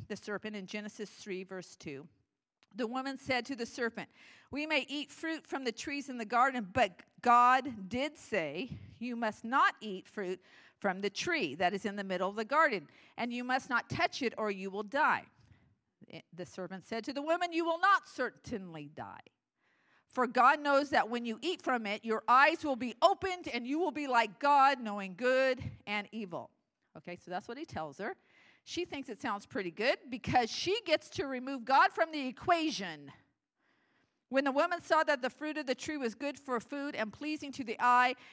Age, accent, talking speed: 50-69, American, 200 wpm